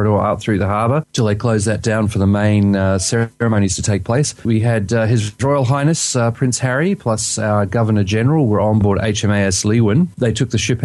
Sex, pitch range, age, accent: male, 95-115 Hz, 30-49, Australian